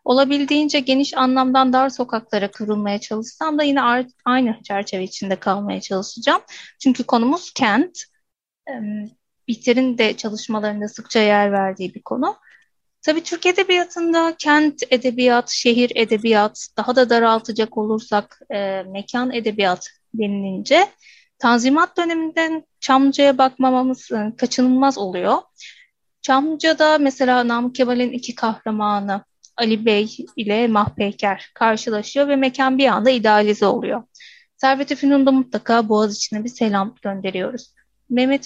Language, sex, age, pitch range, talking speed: Turkish, female, 30-49, 215-270 Hz, 110 wpm